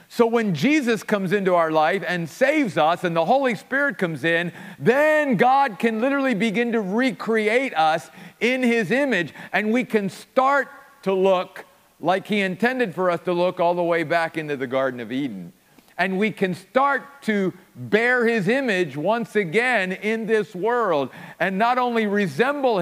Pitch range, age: 170-230 Hz, 50-69